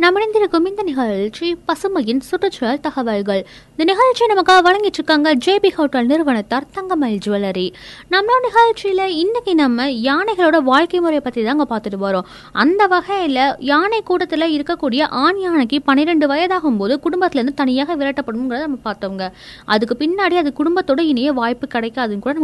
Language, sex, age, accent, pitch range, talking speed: Tamil, female, 20-39, native, 255-345 Hz, 85 wpm